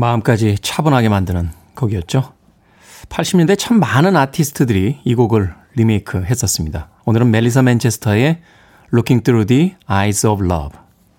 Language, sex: Korean, male